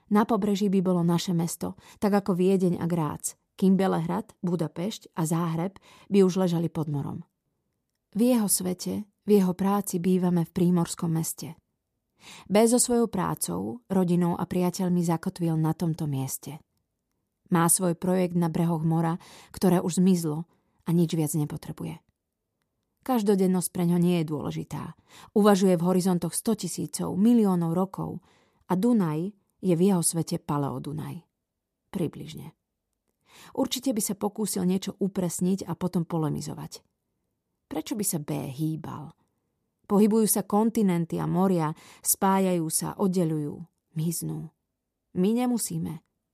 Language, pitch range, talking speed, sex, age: Slovak, 165-195 Hz, 130 wpm, female, 30-49